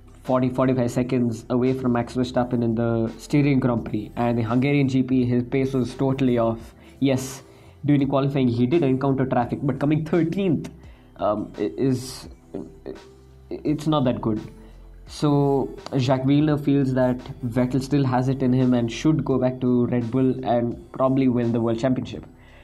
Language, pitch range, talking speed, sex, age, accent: English, 120-135 Hz, 155 wpm, male, 20-39, Indian